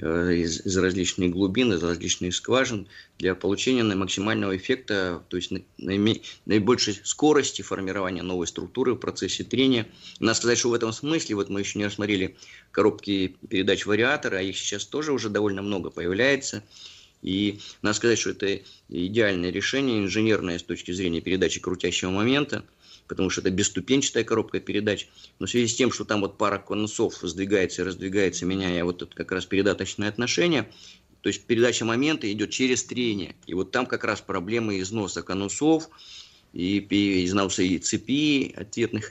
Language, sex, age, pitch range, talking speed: Russian, male, 20-39, 95-115 Hz, 160 wpm